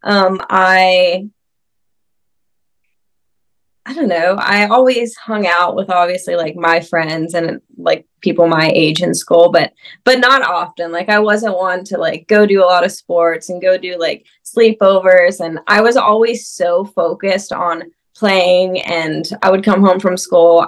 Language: English